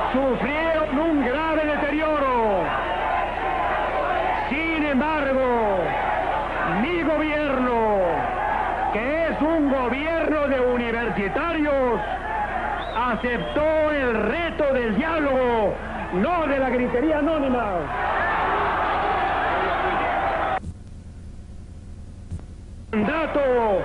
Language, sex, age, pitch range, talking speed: Spanish, male, 50-69, 230-295 Hz, 65 wpm